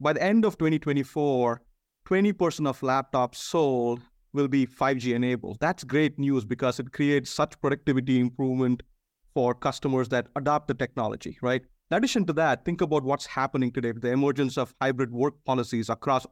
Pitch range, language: 125-160 Hz, English